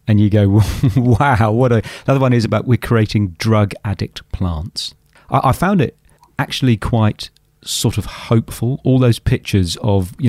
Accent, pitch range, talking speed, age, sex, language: British, 100-120 Hz, 175 wpm, 40-59, male, English